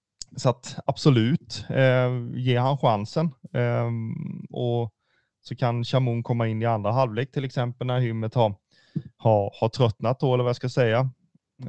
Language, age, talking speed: Swedish, 30-49, 145 wpm